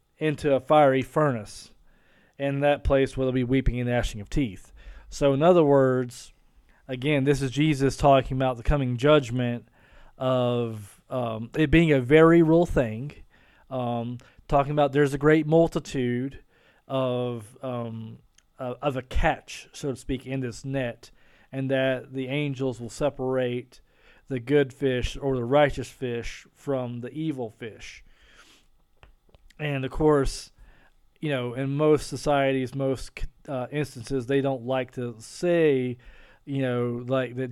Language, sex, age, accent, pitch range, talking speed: English, male, 40-59, American, 125-140 Hz, 145 wpm